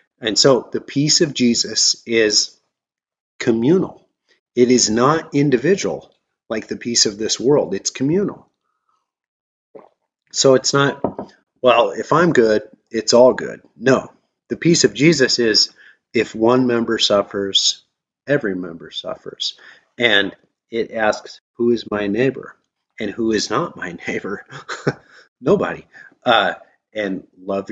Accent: American